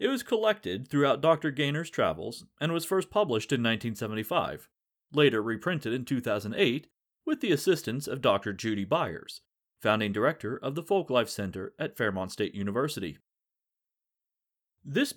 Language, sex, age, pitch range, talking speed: English, male, 30-49, 105-160 Hz, 140 wpm